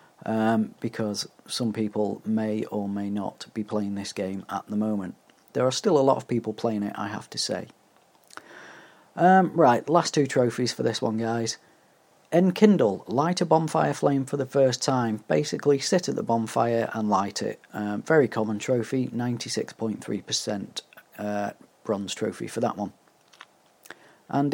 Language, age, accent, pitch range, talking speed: English, 40-59, British, 105-140 Hz, 160 wpm